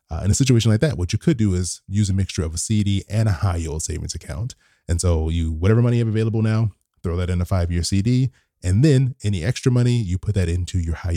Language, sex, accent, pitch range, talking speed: English, male, American, 85-110 Hz, 270 wpm